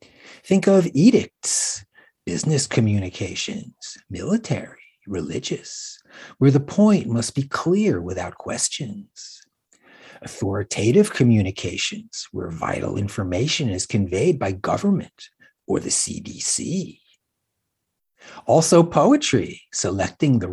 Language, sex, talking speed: English, male, 90 wpm